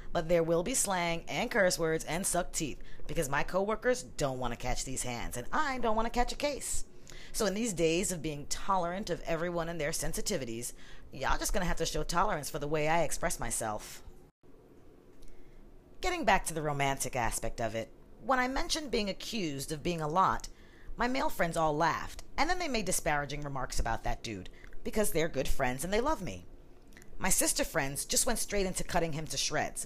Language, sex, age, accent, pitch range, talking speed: English, female, 40-59, American, 125-210 Hz, 210 wpm